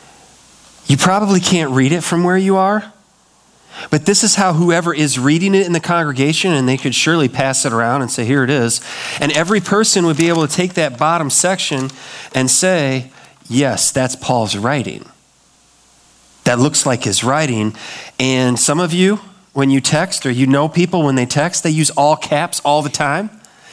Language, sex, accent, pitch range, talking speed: English, male, American, 130-200 Hz, 190 wpm